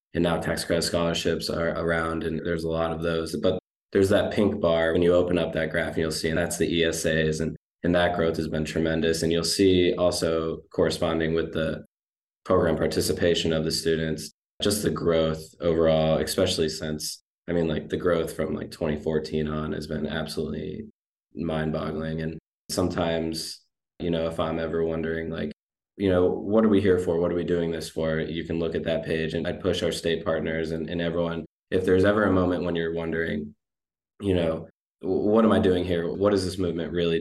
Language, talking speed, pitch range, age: English, 205 wpm, 80-85 Hz, 20-39